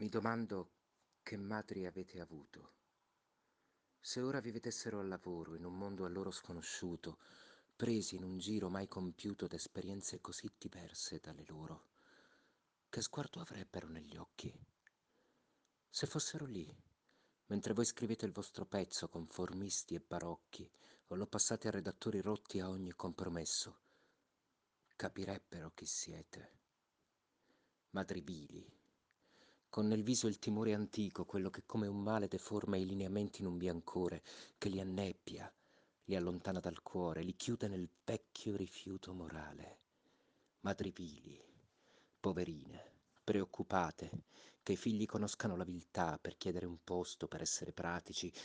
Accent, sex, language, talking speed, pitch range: native, male, Italian, 130 wpm, 90-105 Hz